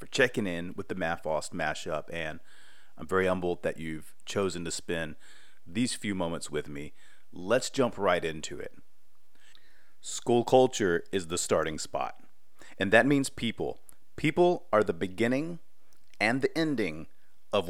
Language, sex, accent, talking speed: English, male, American, 150 wpm